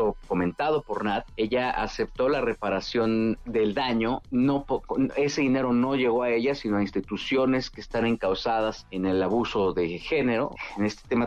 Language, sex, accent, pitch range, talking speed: Spanish, male, Mexican, 105-130 Hz, 165 wpm